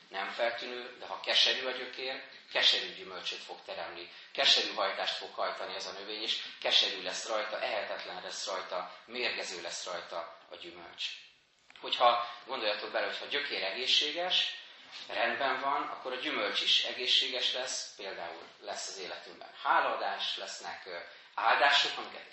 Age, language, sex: 30-49, Hungarian, male